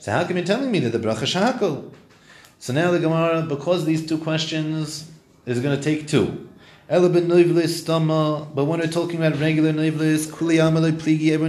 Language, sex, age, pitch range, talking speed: English, male, 30-49, 125-165 Hz, 160 wpm